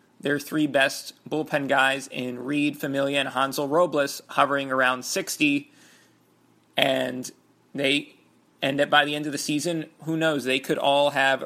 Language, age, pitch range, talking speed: English, 30-49, 135-160 Hz, 160 wpm